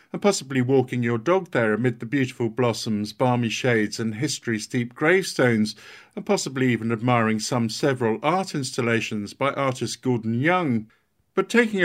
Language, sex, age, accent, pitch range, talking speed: English, male, 50-69, British, 120-150 Hz, 150 wpm